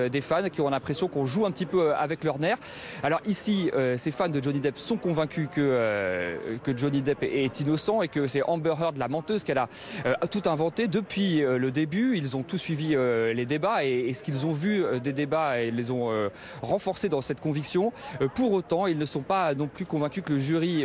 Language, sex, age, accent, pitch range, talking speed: French, male, 30-49, French, 145-185 Hz, 235 wpm